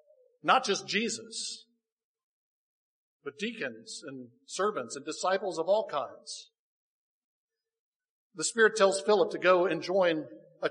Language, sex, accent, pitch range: English, male, American, 160-255 Hz